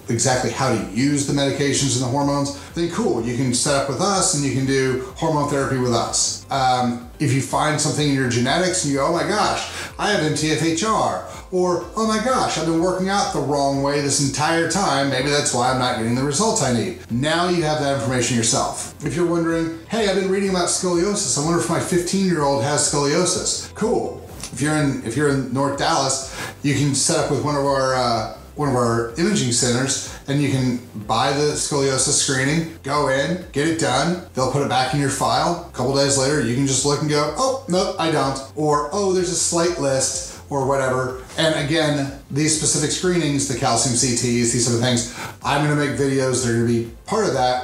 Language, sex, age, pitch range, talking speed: English, male, 30-49, 130-155 Hz, 225 wpm